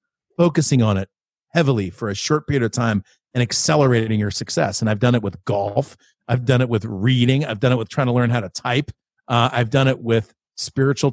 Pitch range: 115-150 Hz